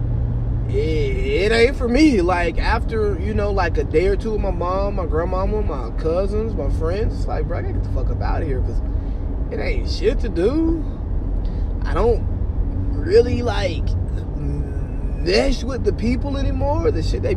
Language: English